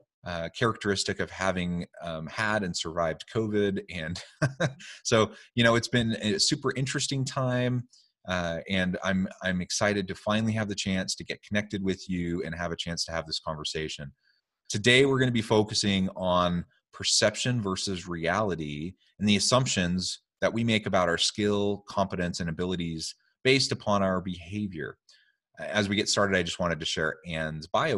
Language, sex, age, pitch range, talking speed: English, male, 30-49, 90-110 Hz, 165 wpm